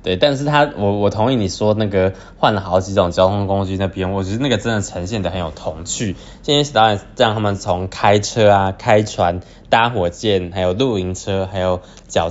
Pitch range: 90-110 Hz